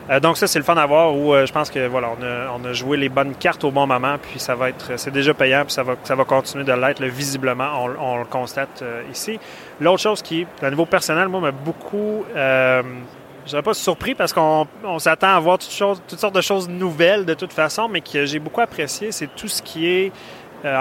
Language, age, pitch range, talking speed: French, 30-49, 135-165 Hz, 255 wpm